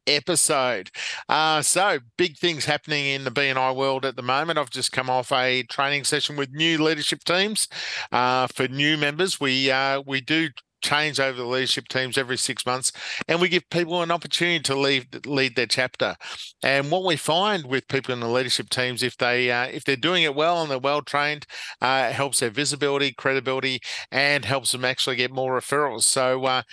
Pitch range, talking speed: 130-150 Hz, 195 wpm